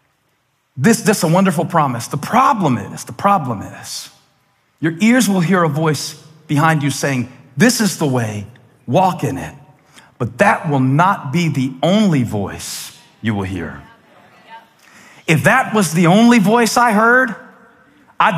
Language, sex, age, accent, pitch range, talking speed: English, male, 40-59, American, 150-215 Hz, 155 wpm